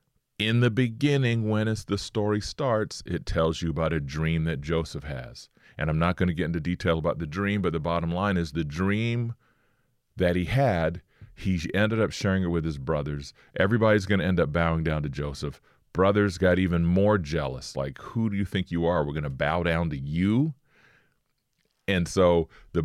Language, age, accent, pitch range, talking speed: English, 30-49, American, 80-100 Hz, 200 wpm